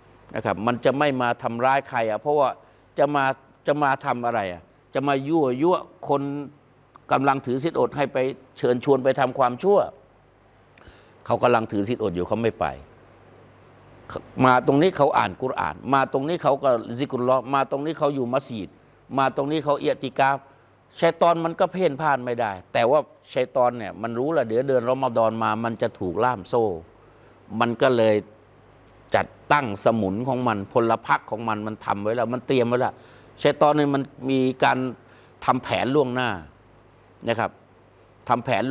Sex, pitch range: male, 110-135 Hz